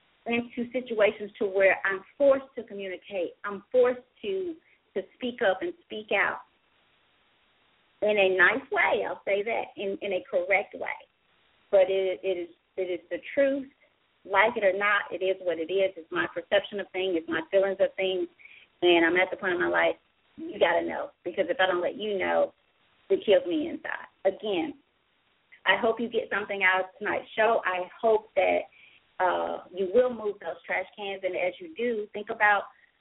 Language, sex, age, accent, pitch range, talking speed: English, female, 30-49, American, 195-250 Hz, 190 wpm